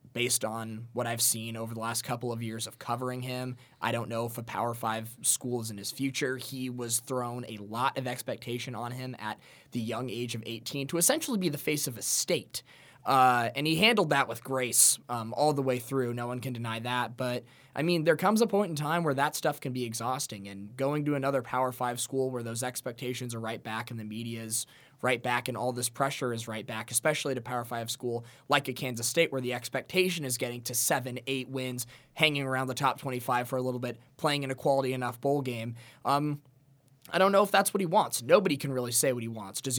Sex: male